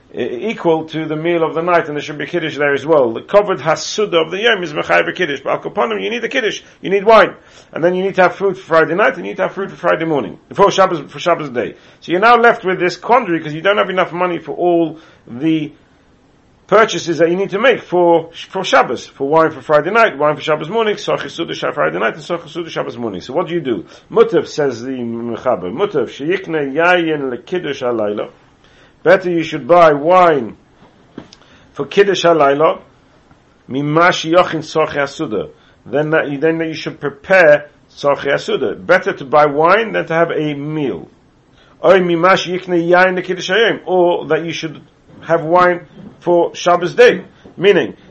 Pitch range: 155-185 Hz